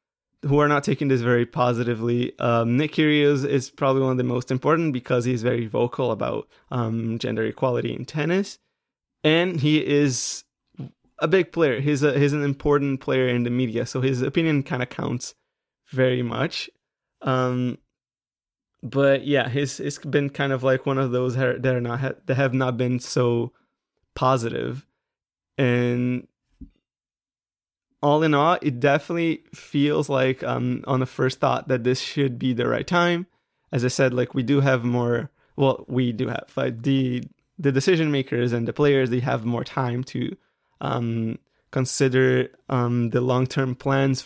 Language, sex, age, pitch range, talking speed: English, male, 20-39, 125-145 Hz, 165 wpm